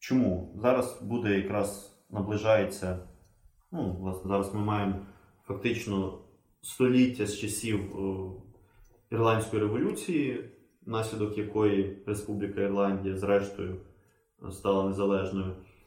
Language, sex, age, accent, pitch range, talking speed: Ukrainian, male, 20-39, native, 95-110 Hz, 85 wpm